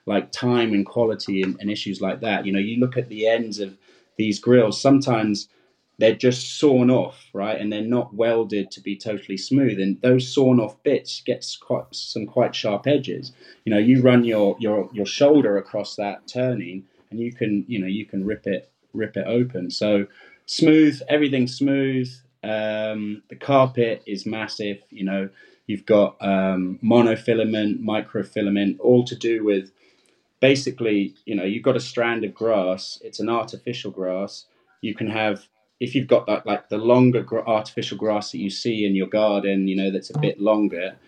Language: English